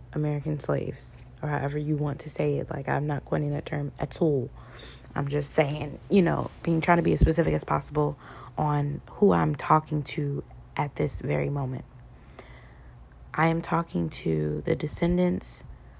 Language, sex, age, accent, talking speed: English, female, 20-39, American, 170 wpm